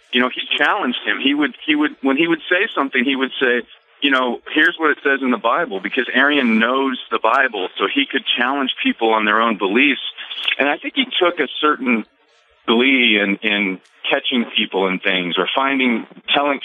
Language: English